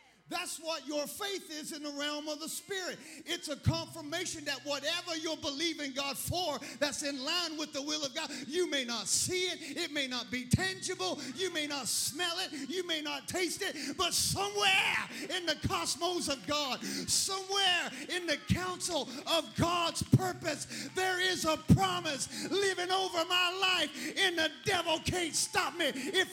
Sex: male